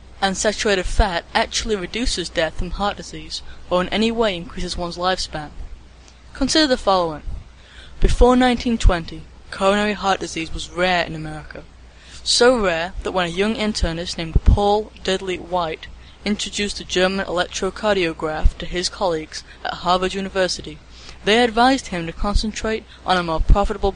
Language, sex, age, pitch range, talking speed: English, female, 10-29, 160-205 Hz, 145 wpm